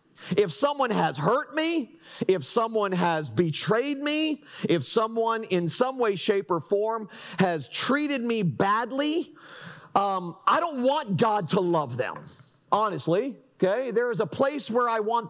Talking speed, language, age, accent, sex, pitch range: 155 wpm, English, 40-59, American, male, 165-245 Hz